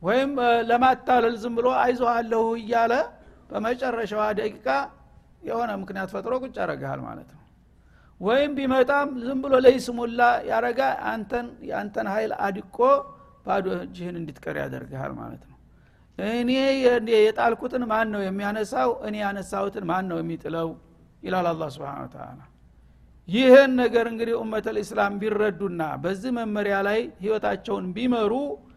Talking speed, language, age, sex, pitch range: 105 wpm, Amharic, 60-79, male, 185-240 Hz